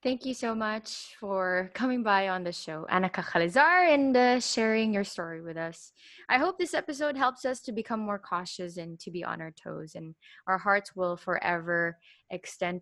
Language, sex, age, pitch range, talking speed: Filipino, female, 20-39, 170-210 Hz, 190 wpm